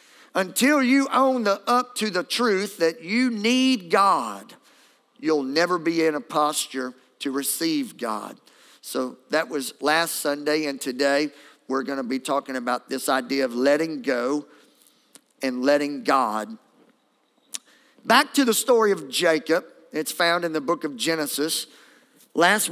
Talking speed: 145 wpm